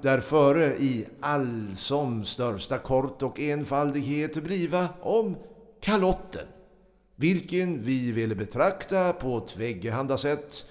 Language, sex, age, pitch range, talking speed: Swedish, male, 60-79, 125-185 Hz, 100 wpm